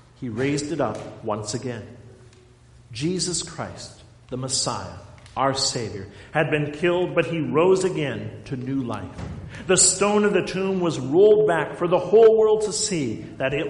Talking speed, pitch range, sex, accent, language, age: 165 wpm, 120-190 Hz, male, American, English, 50-69